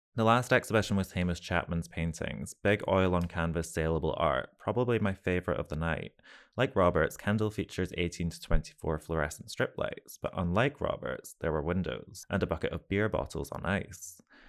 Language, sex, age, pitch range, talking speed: English, male, 20-39, 85-110 Hz, 175 wpm